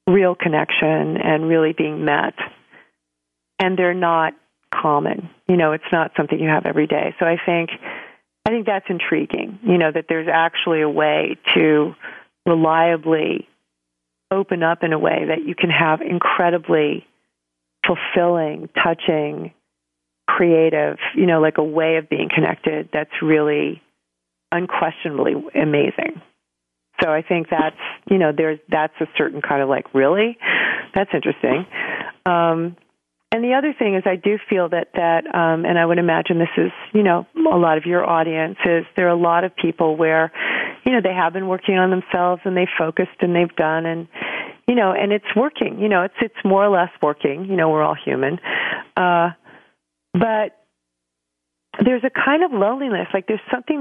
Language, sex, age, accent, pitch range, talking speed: English, female, 40-59, American, 155-185 Hz, 170 wpm